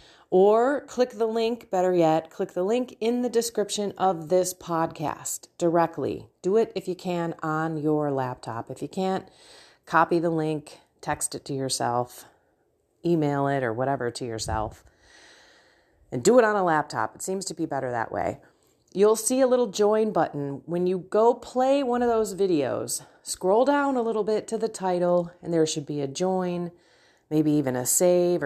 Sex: female